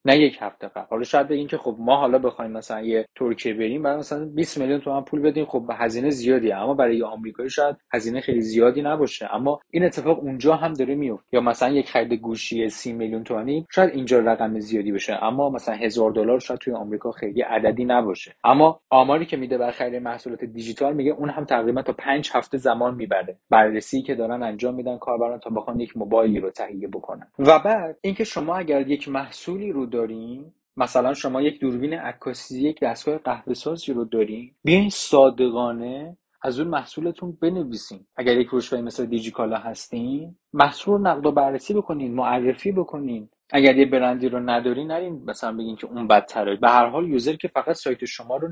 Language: Persian